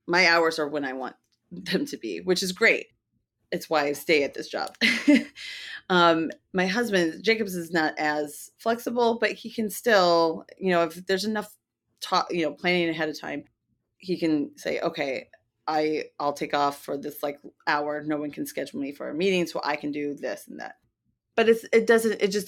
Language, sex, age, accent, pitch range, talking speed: English, female, 30-49, American, 150-185 Hz, 205 wpm